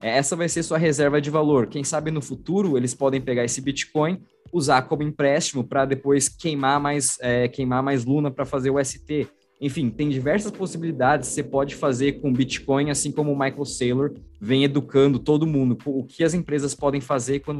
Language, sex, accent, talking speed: Portuguese, male, Brazilian, 195 wpm